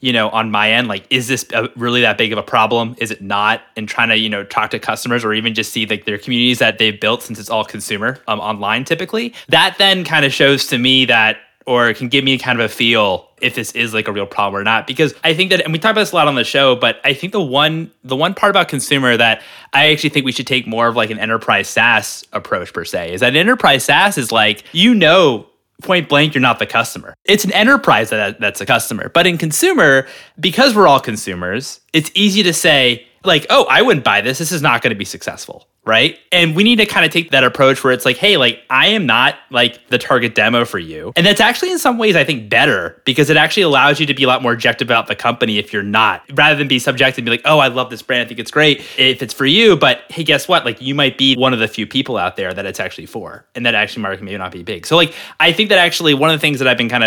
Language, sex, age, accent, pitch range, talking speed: English, male, 20-39, American, 115-155 Hz, 280 wpm